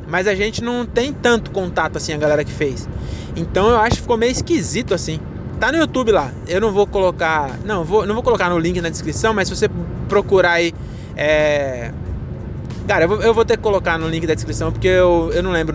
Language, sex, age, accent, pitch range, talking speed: Portuguese, male, 20-39, Brazilian, 150-210 Hz, 230 wpm